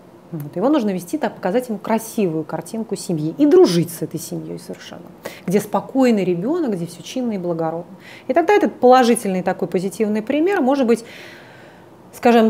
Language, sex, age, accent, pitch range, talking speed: Russian, female, 30-49, native, 175-250 Hz, 165 wpm